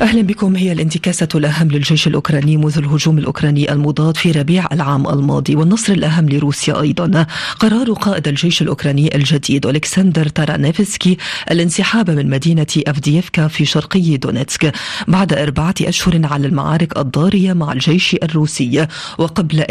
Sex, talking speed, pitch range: female, 130 wpm, 150-175 Hz